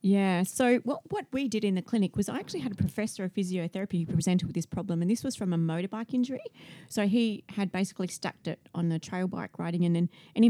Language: English